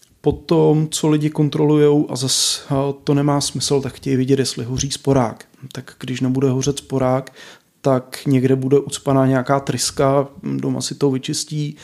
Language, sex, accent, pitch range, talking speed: Czech, male, native, 130-145 Hz, 155 wpm